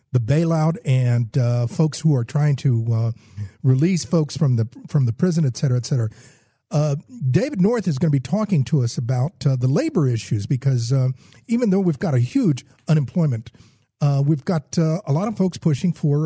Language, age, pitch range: English, 50-69, 125-160 Hz